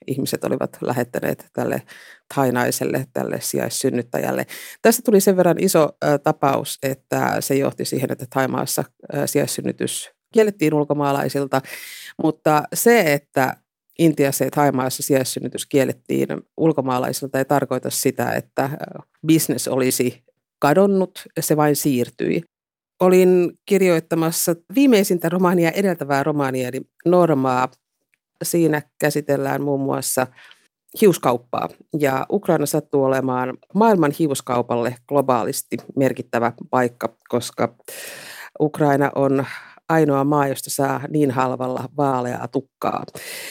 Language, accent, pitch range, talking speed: Finnish, native, 130-165 Hz, 100 wpm